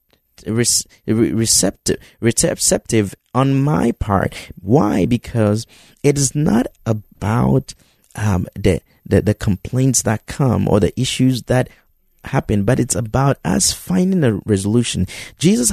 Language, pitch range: English, 95-140 Hz